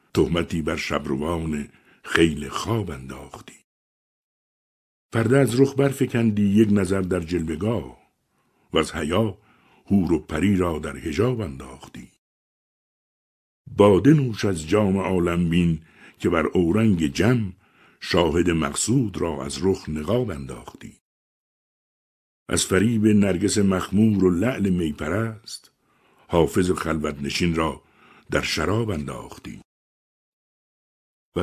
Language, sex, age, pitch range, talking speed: Persian, male, 60-79, 80-110 Hz, 105 wpm